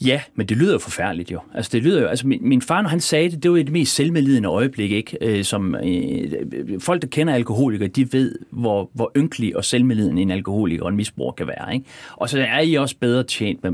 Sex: male